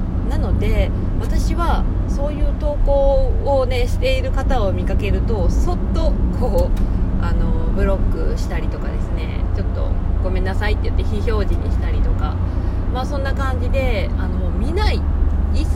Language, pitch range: Japanese, 70-85 Hz